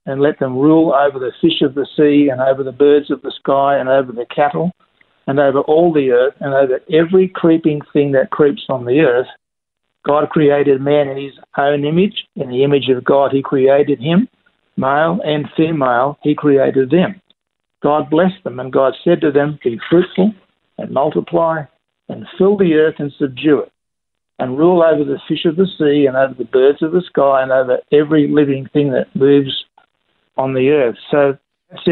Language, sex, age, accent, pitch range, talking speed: English, male, 60-79, Australian, 140-175 Hz, 195 wpm